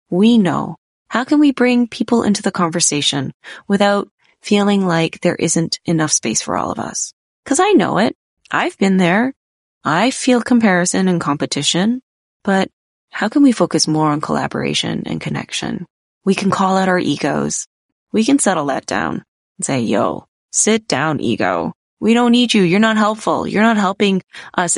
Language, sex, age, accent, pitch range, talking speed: English, female, 20-39, American, 160-225 Hz, 170 wpm